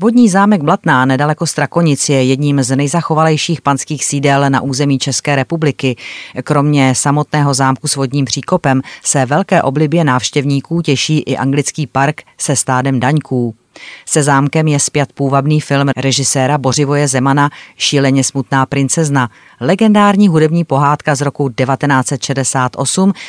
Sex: female